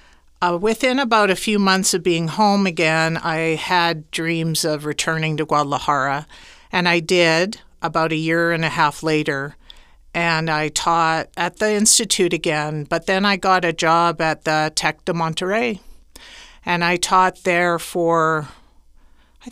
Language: English